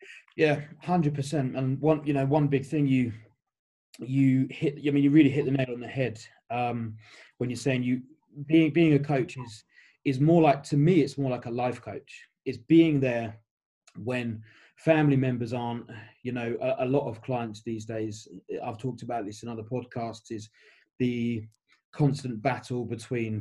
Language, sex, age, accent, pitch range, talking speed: English, male, 20-39, British, 115-140 Hz, 195 wpm